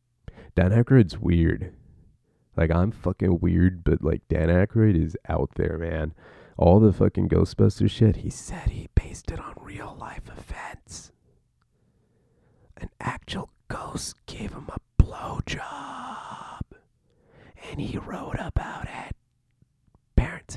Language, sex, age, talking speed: English, male, 30-49, 120 wpm